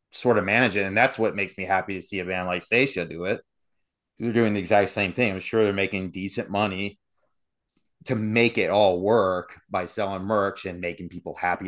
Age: 30-49